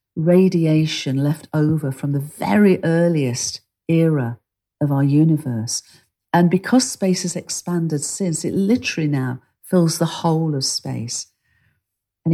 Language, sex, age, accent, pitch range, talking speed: English, female, 50-69, British, 135-185 Hz, 125 wpm